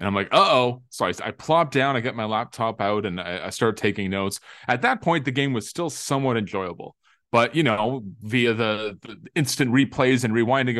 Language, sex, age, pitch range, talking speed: English, male, 20-39, 105-135 Hz, 210 wpm